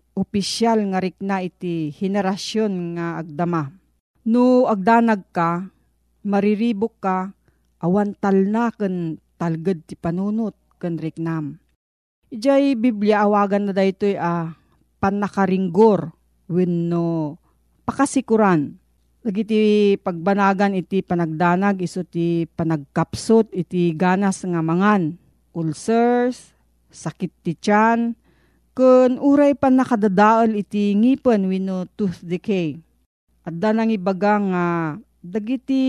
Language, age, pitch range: Filipino, 40-59, 175-220 Hz